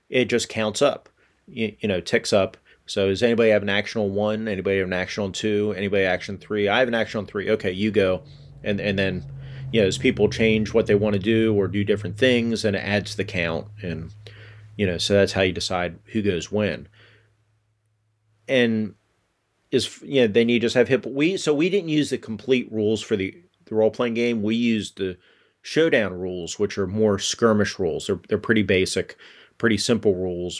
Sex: male